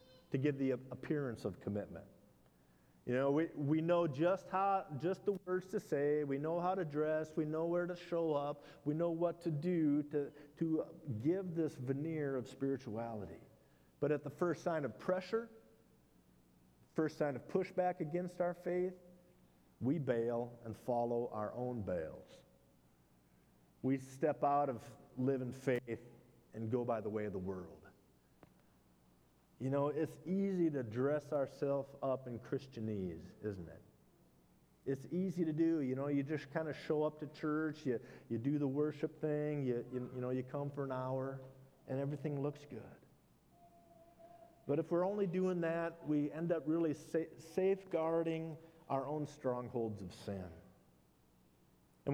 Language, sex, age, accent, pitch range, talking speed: English, male, 50-69, American, 125-165 Hz, 160 wpm